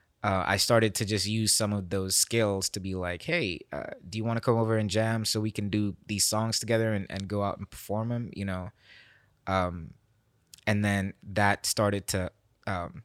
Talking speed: 210 wpm